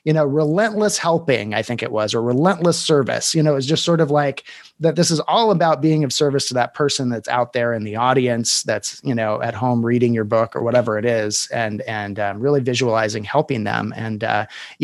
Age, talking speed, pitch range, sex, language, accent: 30-49, 225 wpm, 120-170 Hz, male, English, American